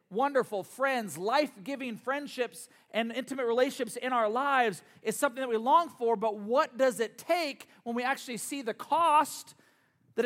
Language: English